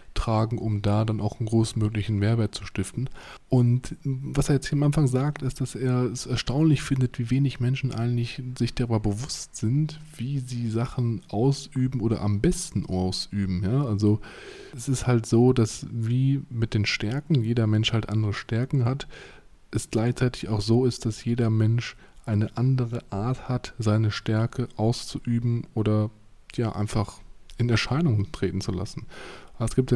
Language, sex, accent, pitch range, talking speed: German, male, German, 110-130 Hz, 165 wpm